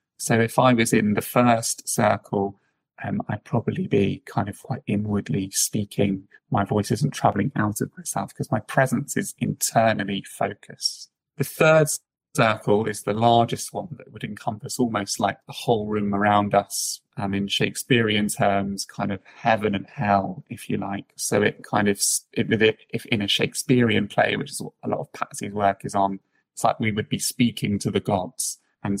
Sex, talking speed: male, 180 wpm